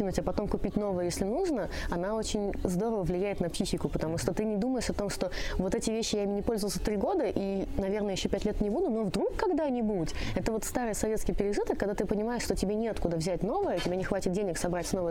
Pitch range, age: 185-235 Hz, 20-39